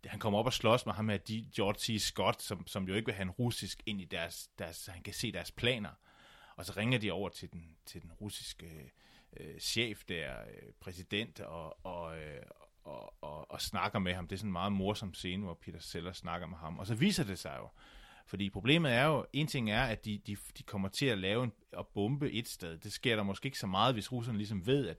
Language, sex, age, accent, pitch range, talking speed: Danish, male, 30-49, native, 95-120 Hz, 245 wpm